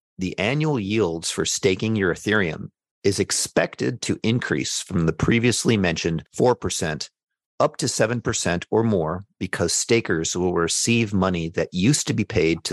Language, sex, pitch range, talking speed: English, male, 90-115 Hz, 150 wpm